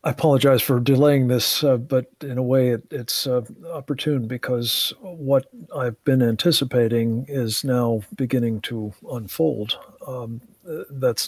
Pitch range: 115-135 Hz